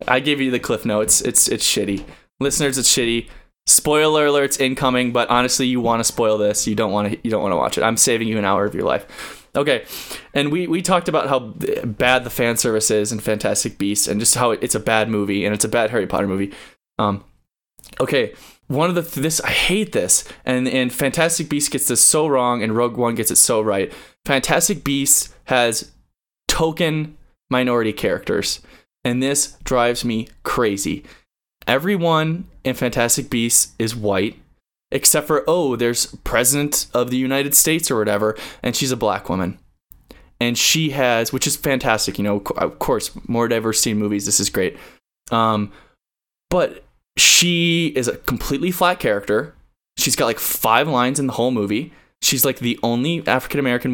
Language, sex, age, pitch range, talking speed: English, male, 20-39, 110-140 Hz, 185 wpm